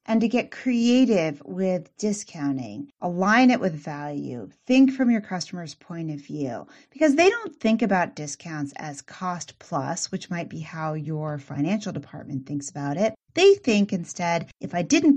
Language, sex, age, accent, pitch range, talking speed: English, female, 30-49, American, 155-210 Hz, 165 wpm